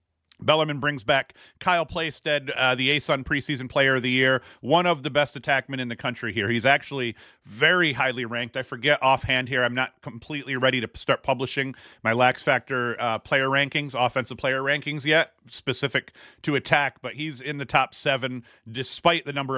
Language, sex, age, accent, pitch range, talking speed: English, male, 40-59, American, 125-145 Hz, 185 wpm